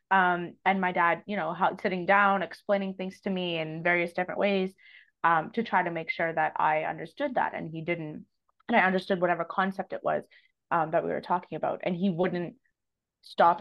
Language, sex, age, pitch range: English, female, 20-39, 165-200 Hz